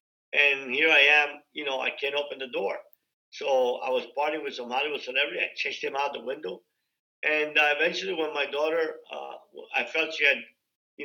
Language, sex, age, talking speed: English, male, 50-69, 200 wpm